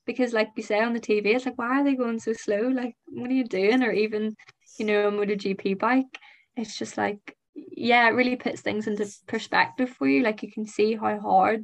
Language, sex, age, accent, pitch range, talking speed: English, female, 10-29, British, 205-240 Hz, 230 wpm